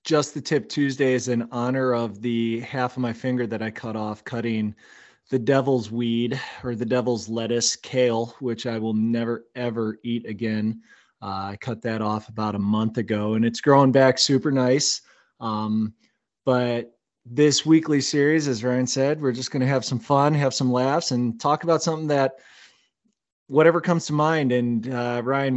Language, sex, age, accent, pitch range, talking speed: English, male, 20-39, American, 115-135 Hz, 185 wpm